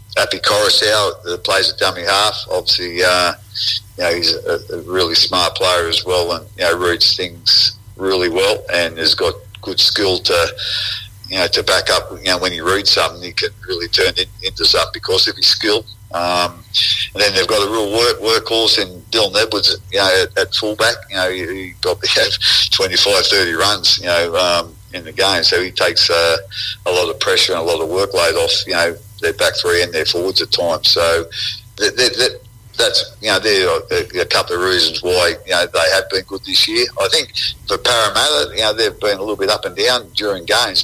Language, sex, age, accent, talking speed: English, male, 50-69, Australian, 215 wpm